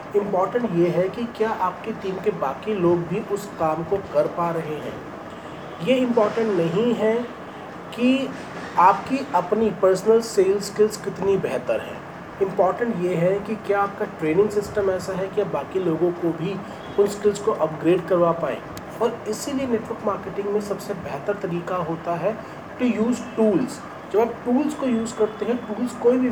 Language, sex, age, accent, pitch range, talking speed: Hindi, male, 40-59, native, 170-220 Hz, 175 wpm